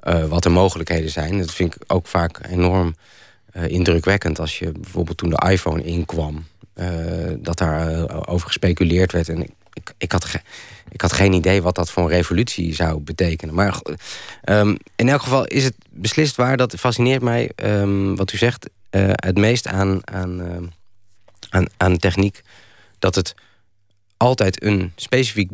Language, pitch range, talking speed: Dutch, 85-105 Hz, 180 wpm